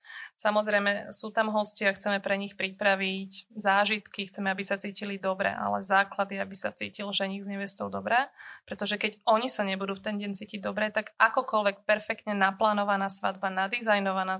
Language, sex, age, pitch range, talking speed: Slovak, female, 20-39, 195-215 Hz, 165 wpm